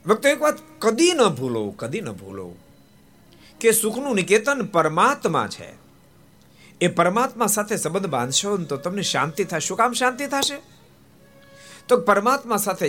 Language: Gujarati